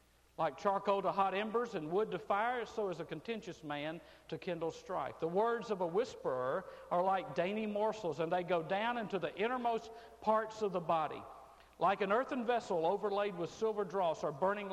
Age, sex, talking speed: 50-69, male, 190 wpm